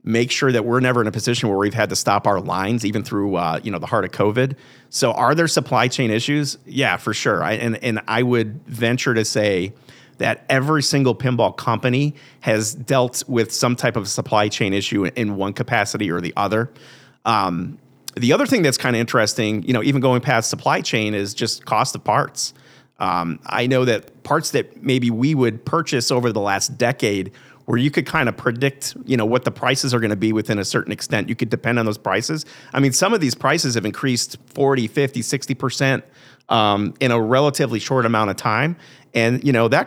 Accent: American